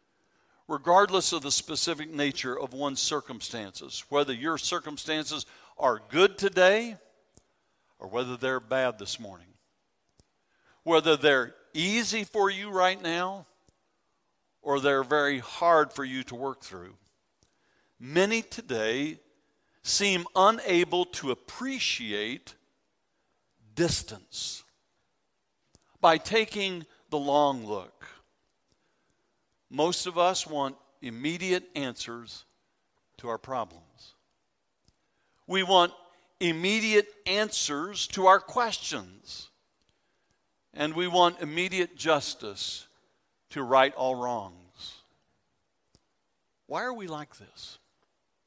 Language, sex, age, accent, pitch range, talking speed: English, male, 60-79, American, 135-180 Hz, 95 wpm